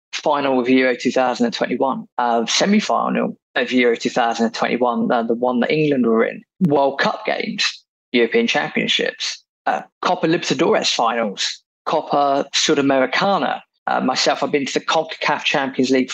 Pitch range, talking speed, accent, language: 125-160 Hz, 135 wpm, British, English